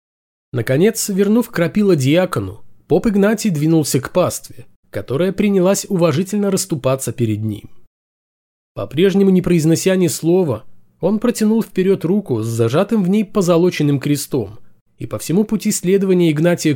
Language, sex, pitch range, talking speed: Russian, male, 115-195 Hz, 130 wpm